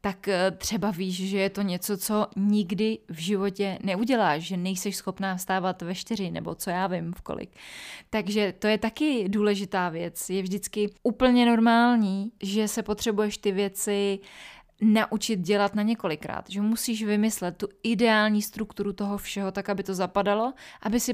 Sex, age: female, 20-39